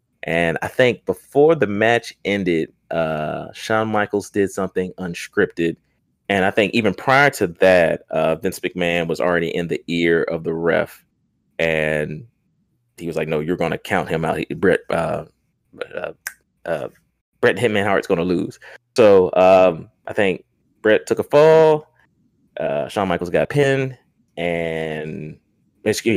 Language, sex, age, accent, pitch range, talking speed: English, male, 30-49, American, 85-110 Hz, 150 wpm